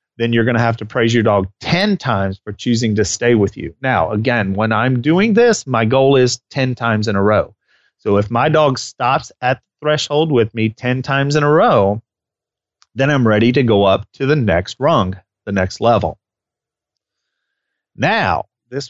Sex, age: male, 30-49